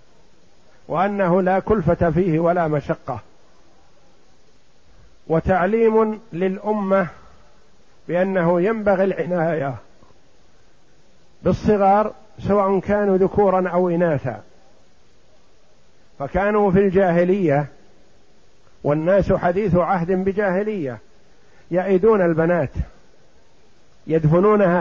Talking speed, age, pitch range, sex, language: 65 wpm, 50-69, 160-200 Hz, male, Arabic